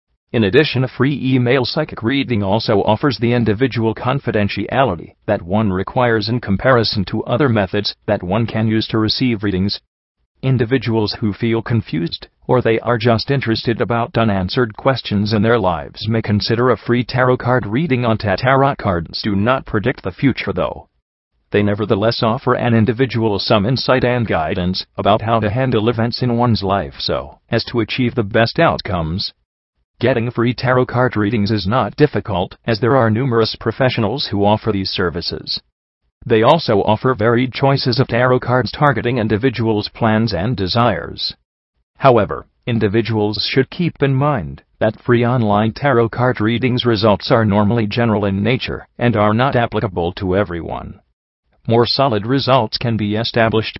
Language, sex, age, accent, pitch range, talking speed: English, male, 40-59, American, 100-125 Hz, 160 wpm